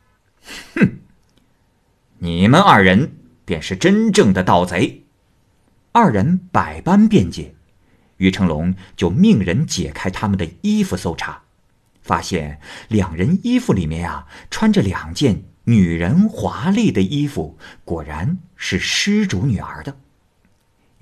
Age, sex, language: 50-69, male, Chinese